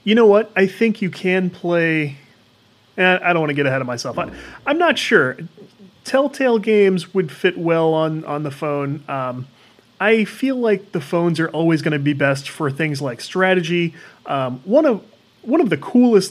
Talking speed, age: 190 wpm, 30-49